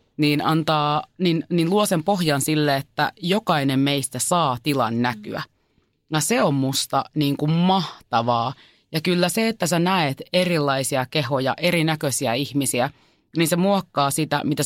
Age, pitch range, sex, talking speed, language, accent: 30-49, 140-165 Hz, female, 145 wpm, Finnish, native